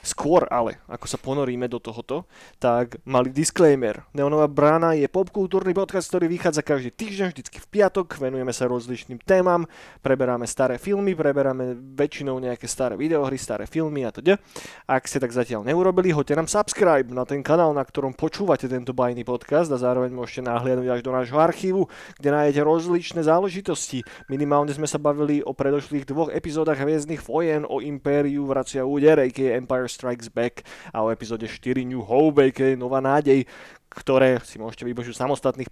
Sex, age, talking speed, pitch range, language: male, 20-39, 170 wpm, 125-150 Hz, Slovak